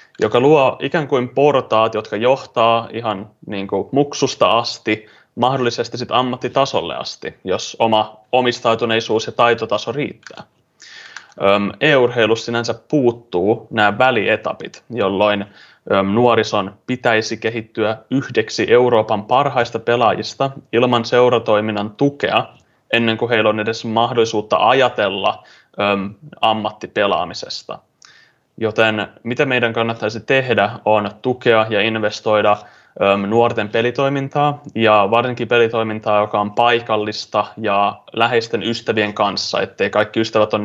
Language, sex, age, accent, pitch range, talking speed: Finnish, male, 20-39, native, 105-120 Hz, 105 wpm